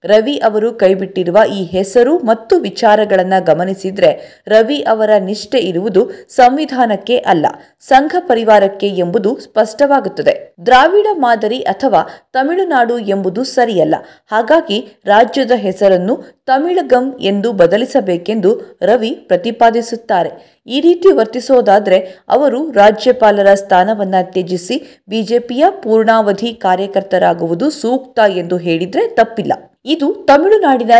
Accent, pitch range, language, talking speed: native, 195-255 Hz, Kannada, 95 wpm